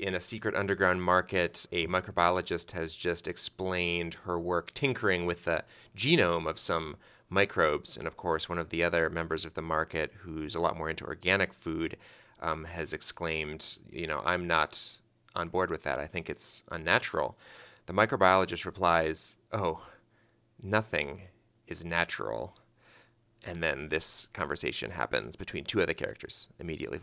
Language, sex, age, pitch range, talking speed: English, male, 30-49, 85-110 Hz, 155 wpm